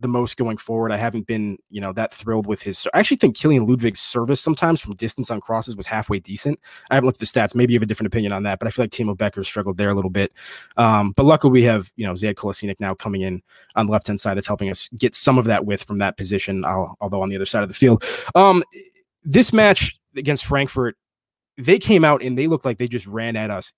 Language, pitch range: English, 110-140 Hz